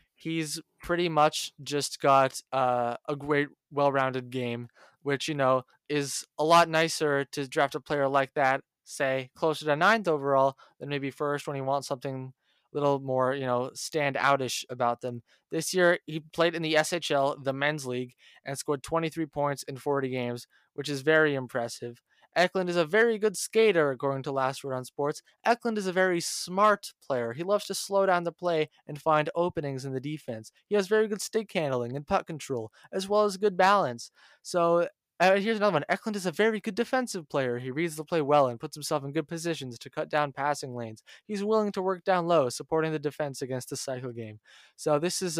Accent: American